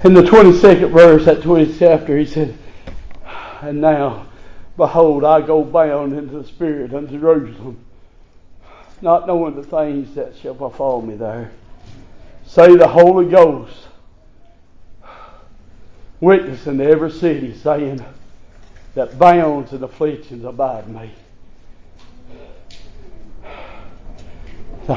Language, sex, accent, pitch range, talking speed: English, male, American, 115-155 Hz, 110 wpm